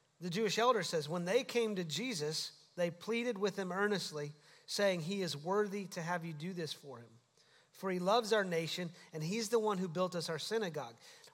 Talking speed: 205 wpm